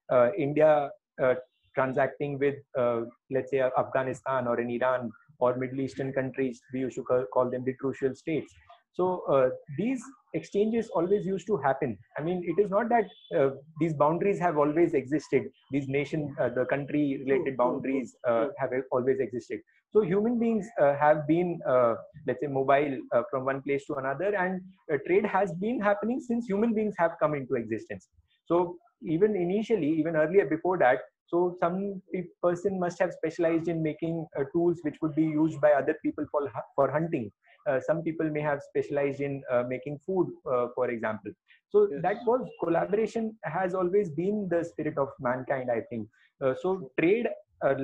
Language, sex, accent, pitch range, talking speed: English, male, Indian, 135-185 Hz, 175 wpm